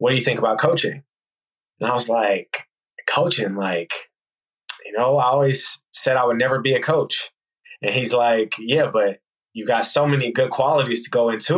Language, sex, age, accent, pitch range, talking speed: English, male, 20-39, American, 120-140 Hz, 190 wpm